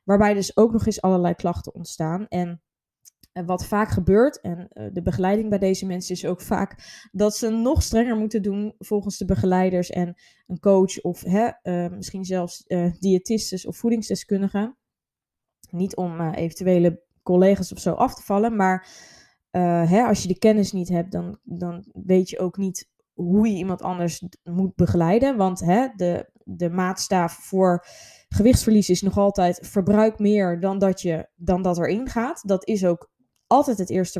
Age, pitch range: 20-39, 180-210 Hz